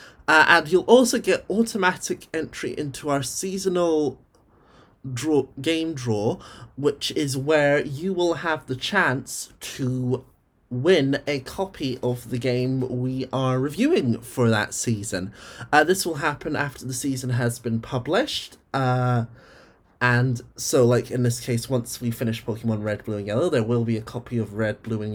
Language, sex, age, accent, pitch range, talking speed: English, male, 20-39, British, 115-145 Hz, 160 wpm